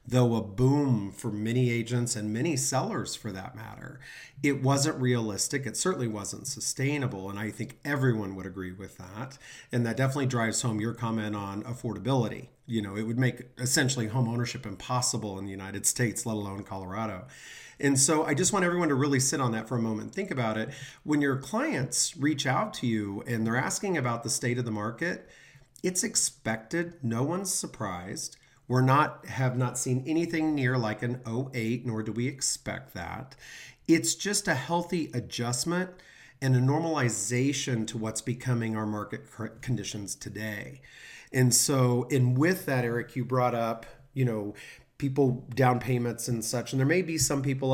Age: 40-59